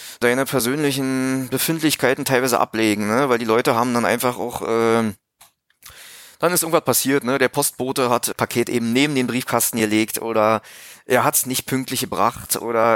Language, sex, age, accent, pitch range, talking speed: German, male, 30-49, German, 110-130 Hz, 165 wpm